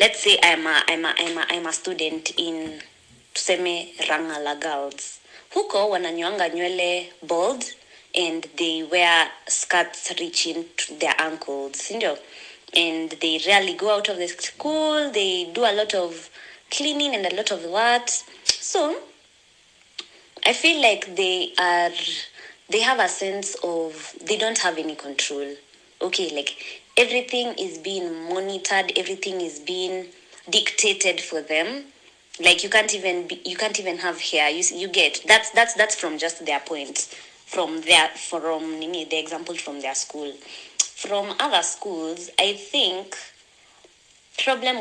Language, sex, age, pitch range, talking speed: English, female, 20-39, 165-230 Hz, 145 wpm